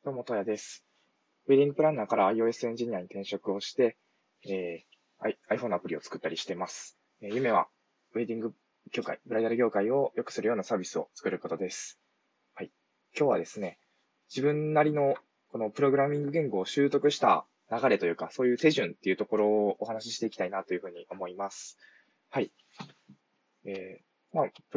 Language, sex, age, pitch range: Japanese, male, 20-39, 105-140 Hz